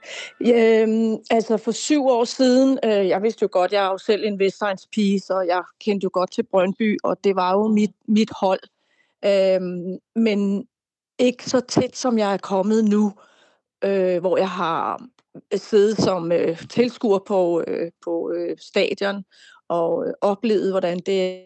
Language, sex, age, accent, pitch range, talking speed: Danish, female, 30-49, native, 185-215 Hz, 165 wpm